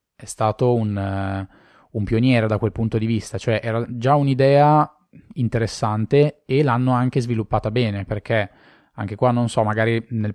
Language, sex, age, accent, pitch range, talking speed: Italian, male, 20-39, native, 105-120 Hz, 160 wpm